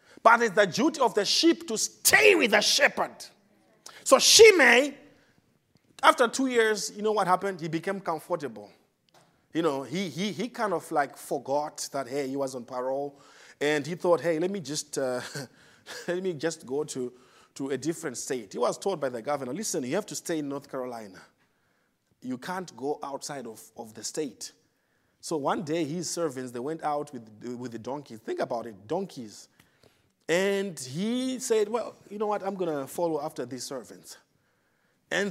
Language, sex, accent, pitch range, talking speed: English, male, Nigerian, 145-210 Hz, 185 wpm